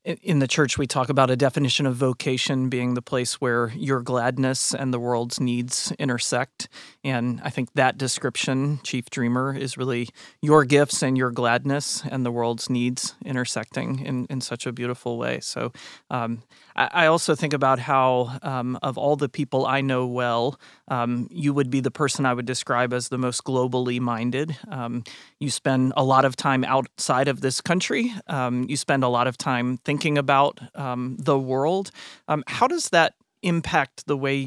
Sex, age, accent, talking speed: male, 30-49, American, 180 wpm